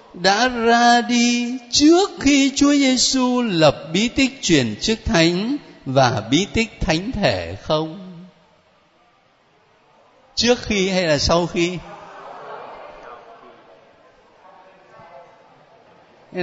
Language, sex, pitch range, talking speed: Vietnamese, male, 160-245 Hz, 95 wpm